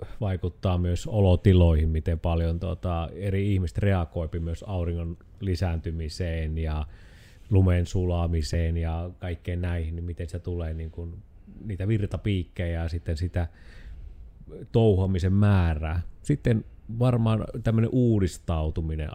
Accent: native